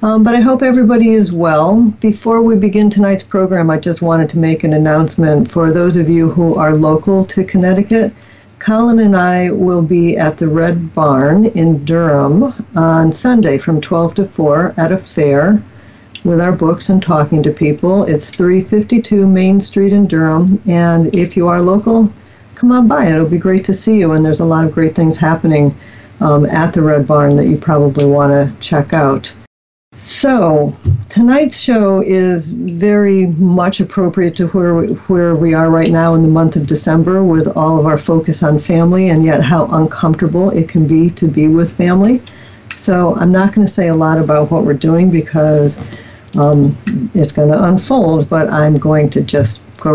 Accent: American